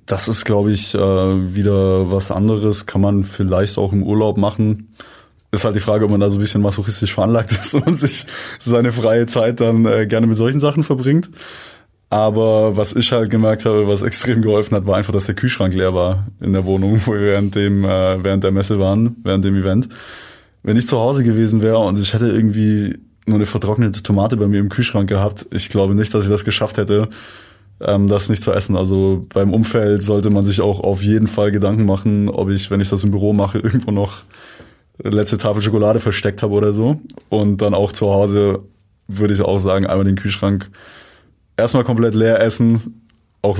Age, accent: 20-39, German